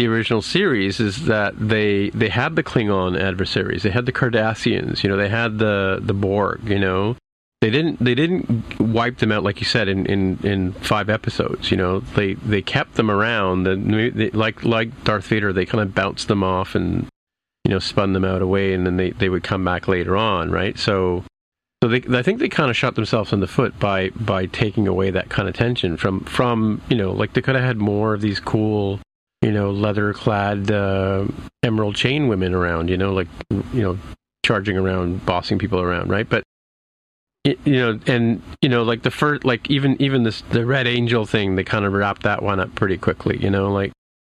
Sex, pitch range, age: male, 95-115 Hz, 40-59